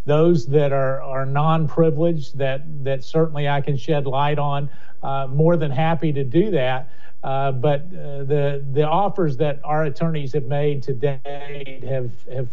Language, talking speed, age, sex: English, 165 wpm, 50-69, male